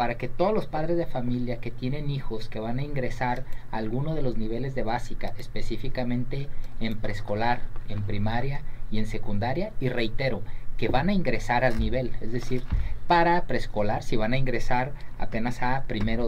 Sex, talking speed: male, 175 wpm